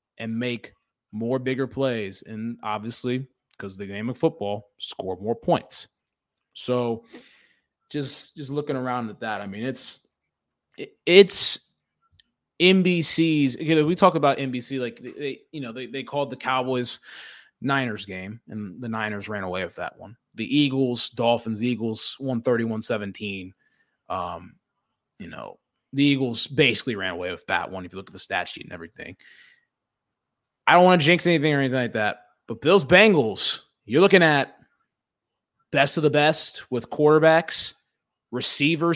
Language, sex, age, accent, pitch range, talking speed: English, male, 20-39, American, 115-160 Hz, 160 wpm